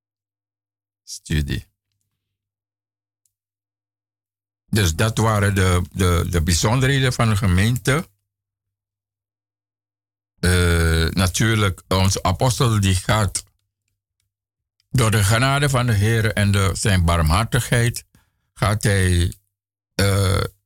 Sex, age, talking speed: male, 60-79, 85 wpm